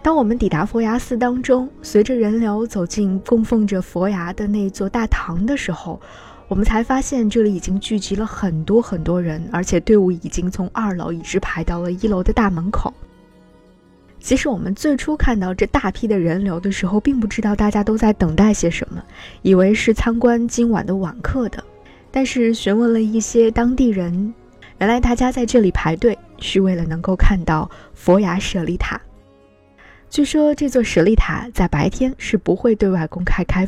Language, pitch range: Chinese, 180-235 Hz